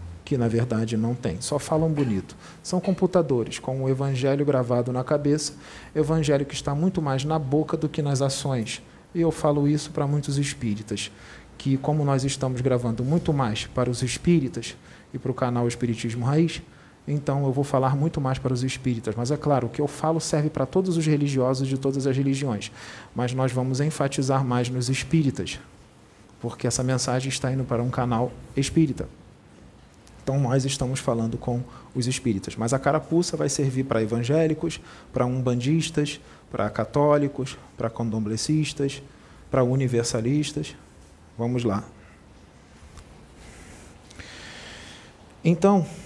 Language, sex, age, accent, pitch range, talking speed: Portuguese, male, 40-59, Brazilian, 115-145 Hz, 150 wpm